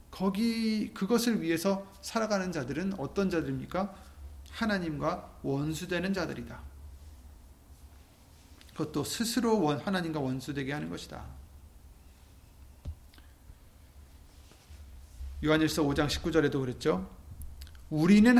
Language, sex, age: Korean, male, 40-59